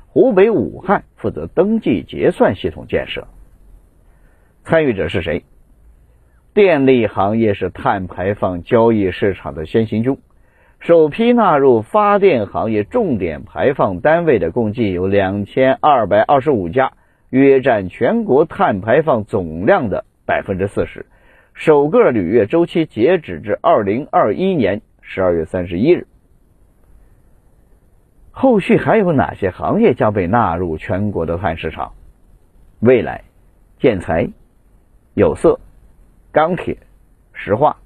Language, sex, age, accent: Chinese, male, 50-69, native